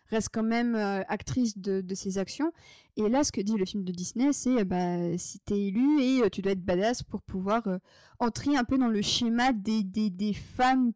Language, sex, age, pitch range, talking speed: French, female, 20-39, 200-245 Hz, 235 wpm